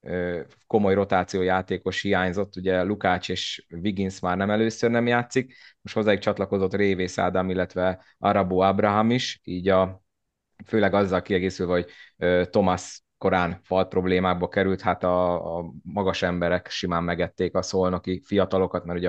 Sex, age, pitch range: male, 20-39, 90-105 Hz